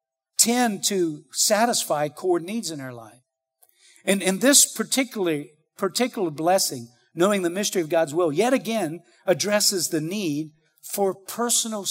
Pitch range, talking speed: 200-270 Hz, 130 wpm